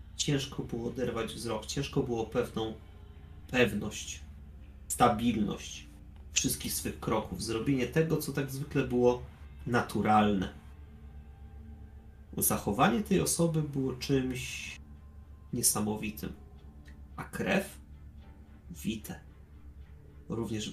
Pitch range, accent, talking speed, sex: 75-110 Hz, native, 85 wpm, male